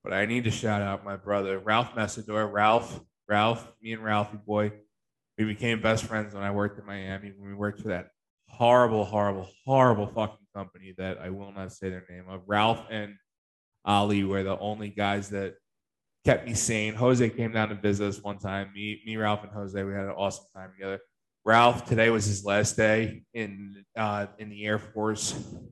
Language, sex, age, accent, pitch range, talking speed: English, male, 20-39, American, 100-110 Hz, 200 wpm